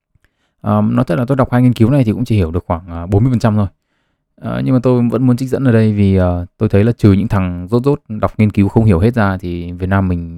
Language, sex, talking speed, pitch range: Vietnamese, male, 290 wpm, 95-120 Hz